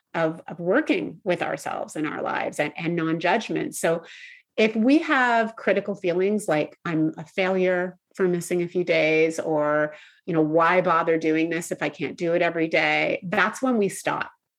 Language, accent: English, American